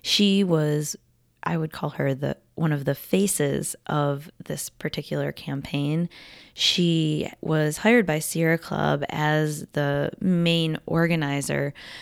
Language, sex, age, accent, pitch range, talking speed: English, female, 20-39, American, 140-165 Hz, 125 wpm